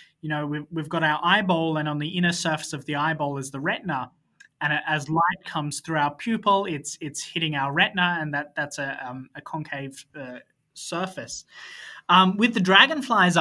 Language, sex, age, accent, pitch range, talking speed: English, male, 20-39, Australian, 150-185 Hz, 190 wpm